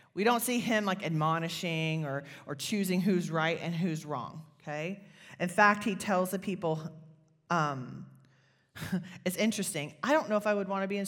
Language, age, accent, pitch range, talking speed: English, 30-49, American, 155-215 Hz, 185 wpm